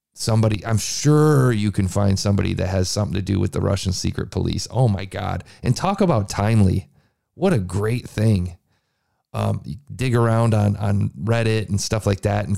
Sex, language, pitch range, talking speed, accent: male, English, 100-125 Hz, 185 wpm, American